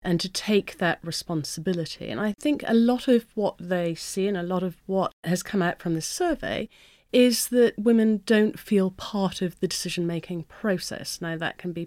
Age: 40-59